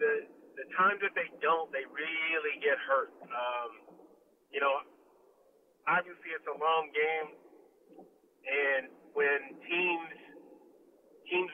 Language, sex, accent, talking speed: English, male, American, 115 wpm